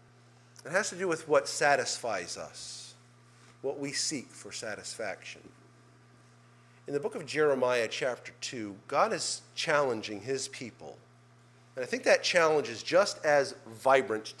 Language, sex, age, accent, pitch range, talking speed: English, male, 40-59, American, 120-145 Hz, 140 wpm